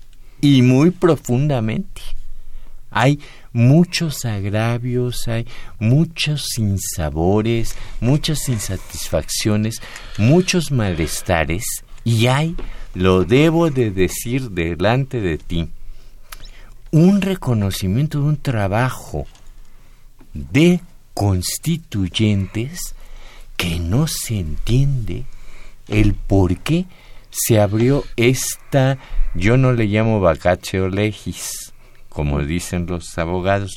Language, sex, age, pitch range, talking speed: Spanish, male, 50-69, 95-130 Hz, 85 wpm